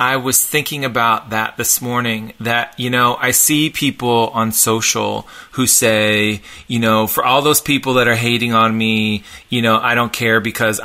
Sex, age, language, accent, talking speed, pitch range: male, 30-49, English, American, 190 wpm, 120-155 Hz